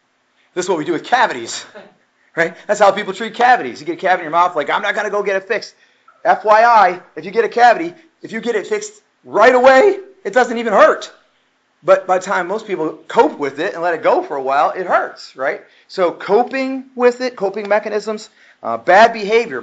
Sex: male